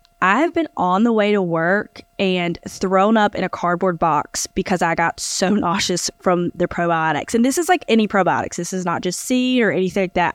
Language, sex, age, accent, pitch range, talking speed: English, female, 20-39, American, 175-210 Hz, 215 wpm